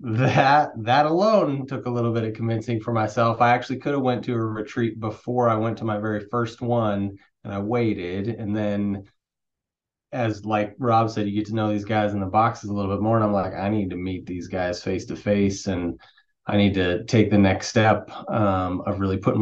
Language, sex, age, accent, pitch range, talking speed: English, male, 30-49, American, 100-120 Hz, 225 wpm